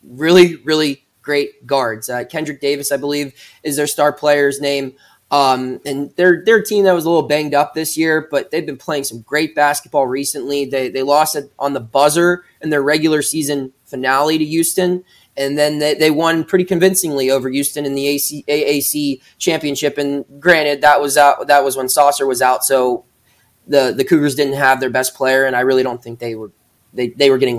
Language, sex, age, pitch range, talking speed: English, male, 20-39, 130-150 Hz, 205 wpm